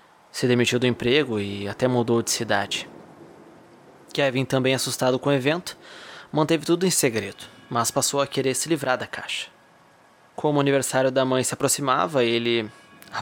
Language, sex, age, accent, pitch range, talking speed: Portuguese, male, 20-39, Brazilian, 120-140 Hz, 165 wpm